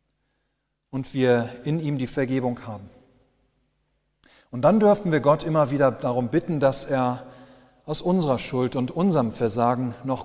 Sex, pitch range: male, 125-155 Hz